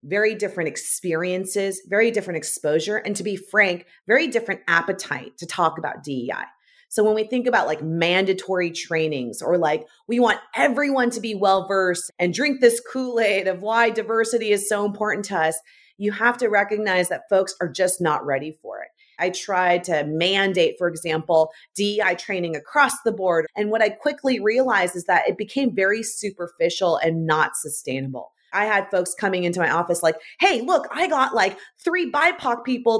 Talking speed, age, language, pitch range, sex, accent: 180 wpm, 30-49, English, 180-245 Hz, female, American